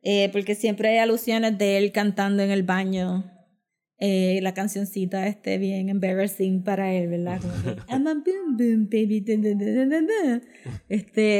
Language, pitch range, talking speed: Spanish, 200-245 Hz, 105 wpm